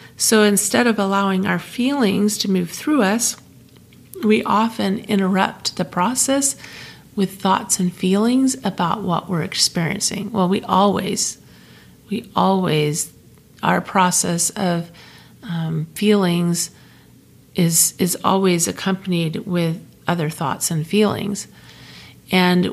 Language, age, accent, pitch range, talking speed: English, 40-59, American, 175-215 Hz, 115 wpm